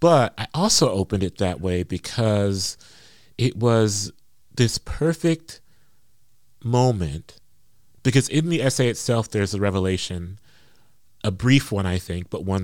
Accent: American